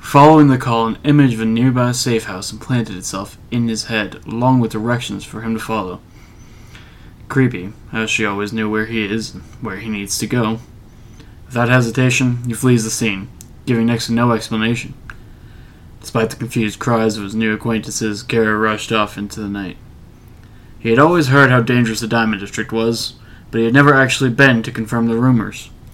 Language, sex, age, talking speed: English, male, 20-39, 185 wpm